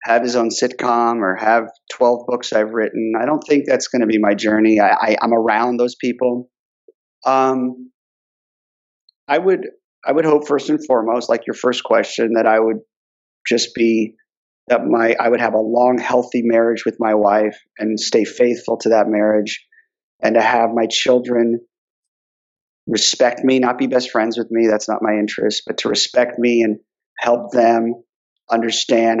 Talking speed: 175 wpm